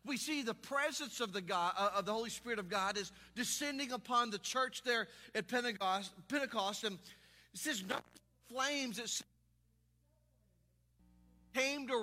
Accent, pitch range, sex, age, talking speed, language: American, 195-245 Hz, male, 40-59, 155 wpm, English